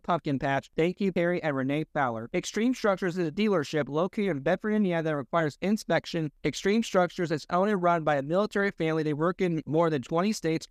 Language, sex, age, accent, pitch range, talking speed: English, male, 30-49, American, 145-180 Hz, 205 wpm